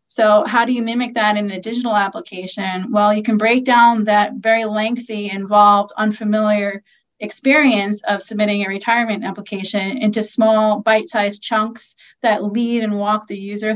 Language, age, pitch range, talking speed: English, 30-49, 210-240 Hz, 155 wpm